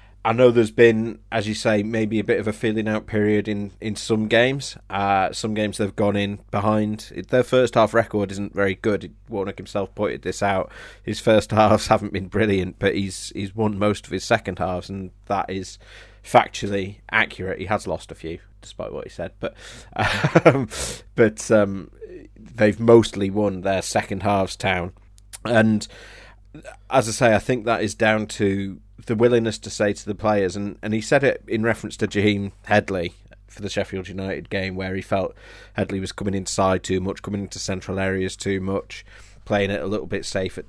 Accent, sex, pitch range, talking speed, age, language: British, male, 100-110 Hz, 195 wpm, 30-49, English